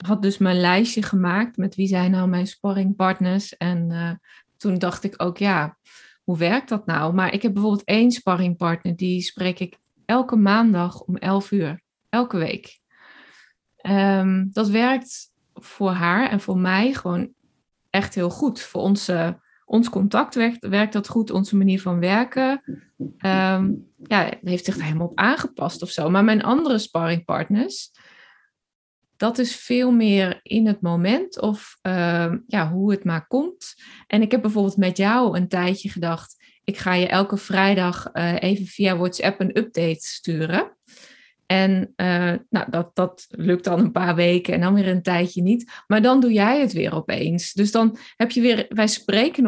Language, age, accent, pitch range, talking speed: Dutch, 20-39, Dutch, 180-220 Hz, 165 wpm